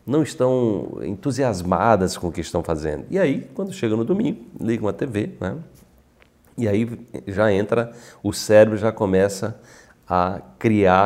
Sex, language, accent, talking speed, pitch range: male, Portuguese, Brazilian, 150 wpm, 90-115 Hz